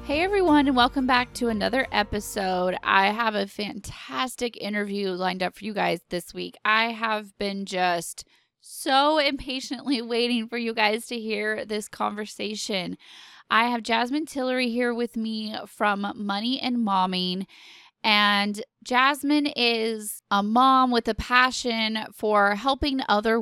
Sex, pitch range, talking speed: female, 205-260 Hz, 145 wpm